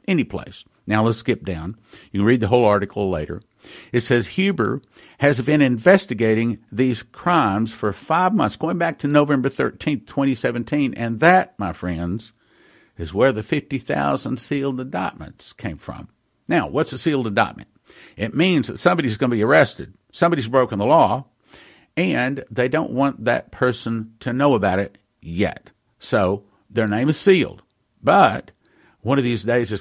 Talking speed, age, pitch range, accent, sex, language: 165 wpm, 60-79, 105-145 Hz, American, male, English